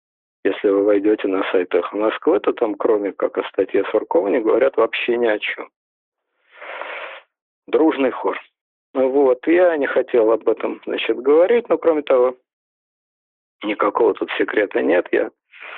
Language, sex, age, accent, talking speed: Russian, male, 50-69, native, 145 wpm